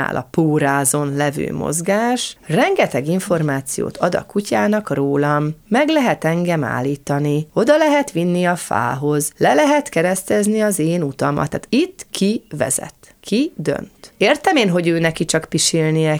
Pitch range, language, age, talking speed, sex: 150-215 Hz, Hungarian, 30-49, 140 wpm, female